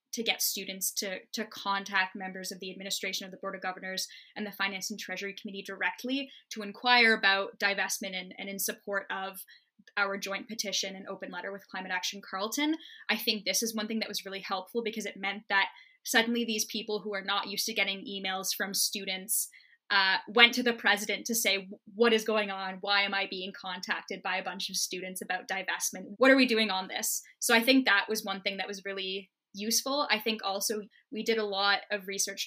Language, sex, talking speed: English, female, 215 wpm